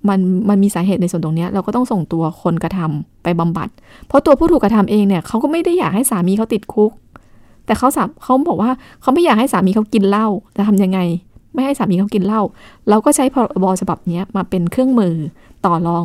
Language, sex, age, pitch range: Thai, female, 20-39, 180-220 Hz